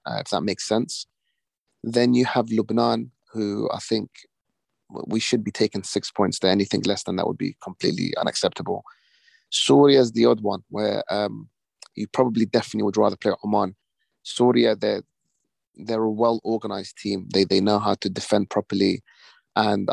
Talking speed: 165 wpm